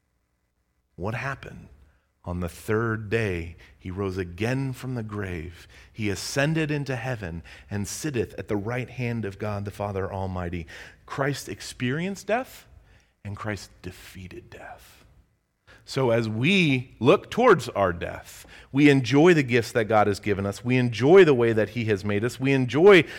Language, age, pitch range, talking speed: English, 40-59, 100-130 Hz, 160 wpm